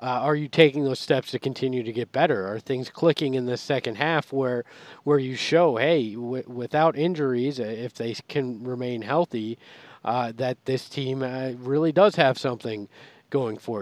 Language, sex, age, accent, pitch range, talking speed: English, male, 40-59, American, 120-145 Hz, 180 wpm